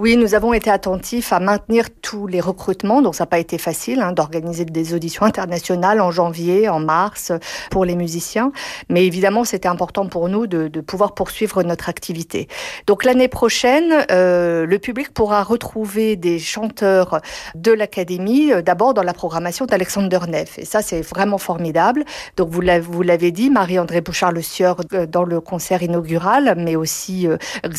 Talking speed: 170 wpm